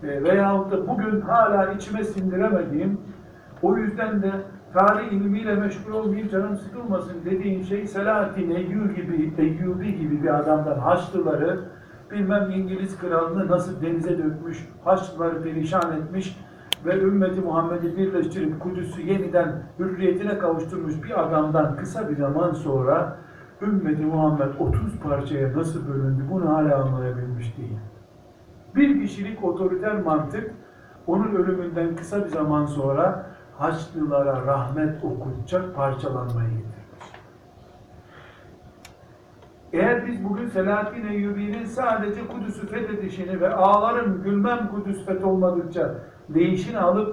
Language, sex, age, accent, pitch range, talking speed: Turkish, male, 60-79, native, 155-200 Hz, 115 wpm